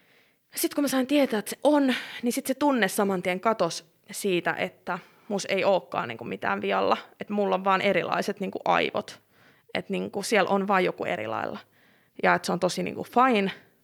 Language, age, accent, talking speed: Finnish, 20-39, native, 175 wpm